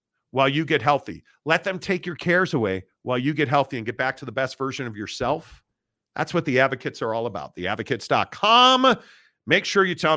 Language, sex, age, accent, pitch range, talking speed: English, male, 50-69, American, 135-180 Hz, 205 wpm